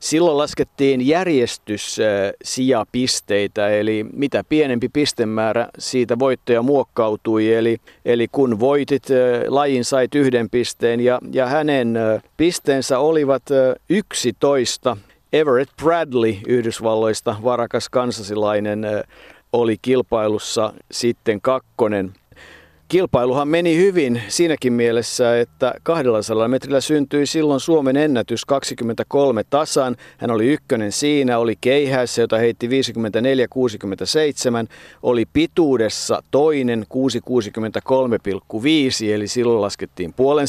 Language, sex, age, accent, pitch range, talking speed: Finnish, male, 50-69, native, 110-135 Hz, 95 wpm